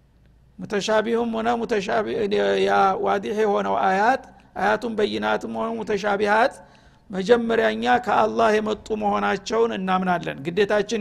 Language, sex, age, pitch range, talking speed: Amharic, male, 50-69, 185-235 Hz, 100 wpm